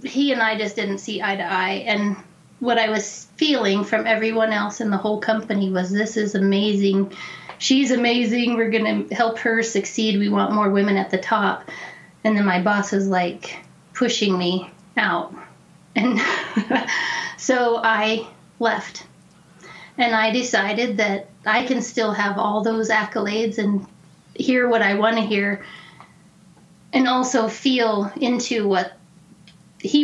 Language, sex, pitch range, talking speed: English, female, 200-230 Hz, 155 wpm